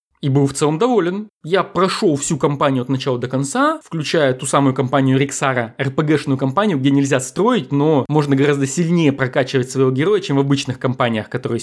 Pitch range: 135-210 Hz